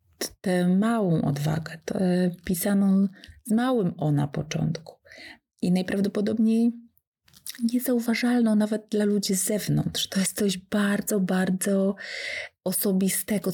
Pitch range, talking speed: 165-210 Hz, 105 wpm